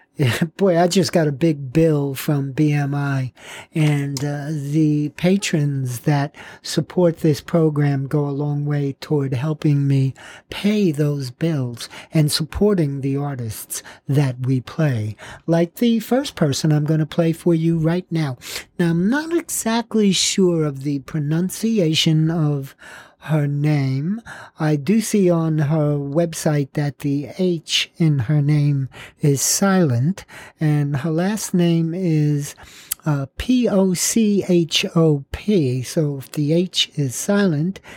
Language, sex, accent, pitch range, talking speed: English, male, American, 145-175 Hz, 135 wpm